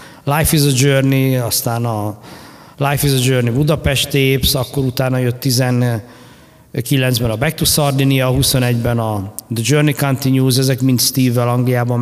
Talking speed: 145 wpm